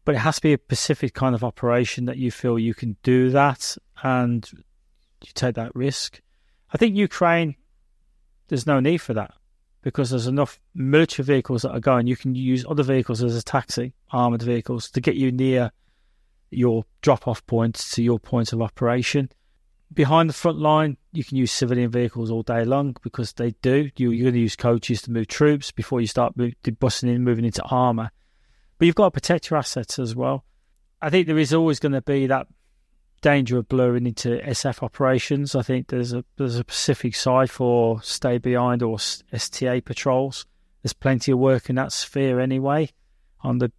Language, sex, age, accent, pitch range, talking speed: English, male, 30-49, British, 115-135 Hz, 190 wpm